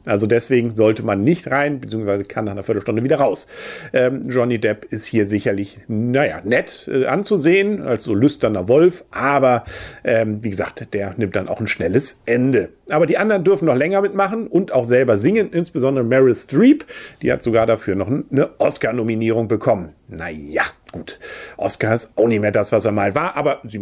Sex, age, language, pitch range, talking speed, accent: male, 40-59, German, 115-165 Hz, 185 wpm, German